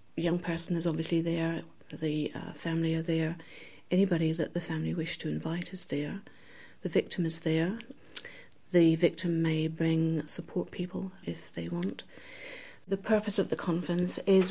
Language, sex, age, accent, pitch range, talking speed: English, female, 40-59, British, 160-175 Hz, 155 wpm